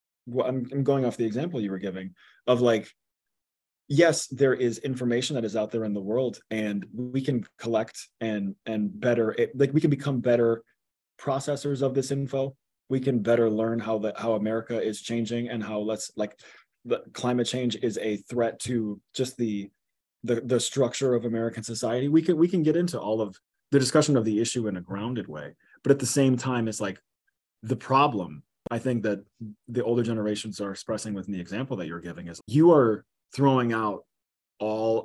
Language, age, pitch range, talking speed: English, 20-39, 105-135 Hz, 195 wpm